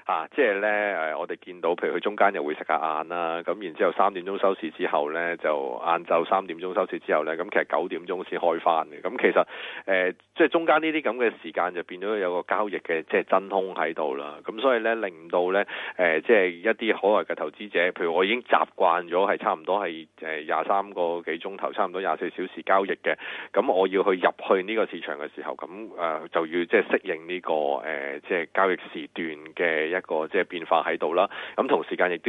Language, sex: Chinese, male